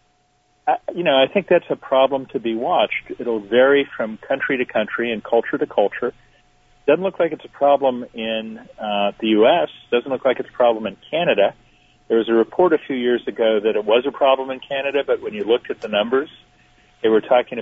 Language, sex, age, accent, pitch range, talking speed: English, male, 50-69, American, 110-135 Hz, 220 wpm